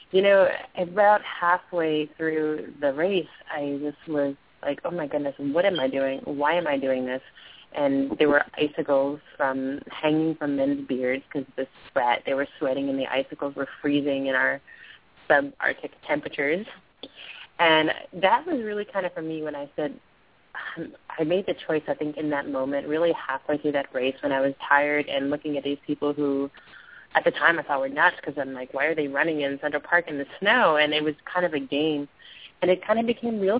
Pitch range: 140-170 Hz